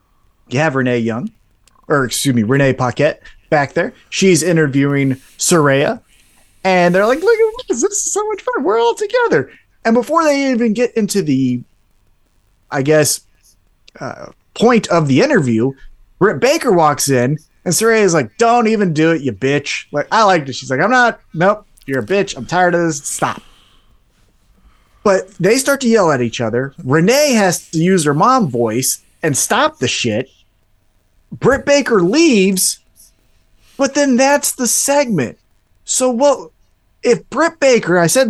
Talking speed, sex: 170 wpm, male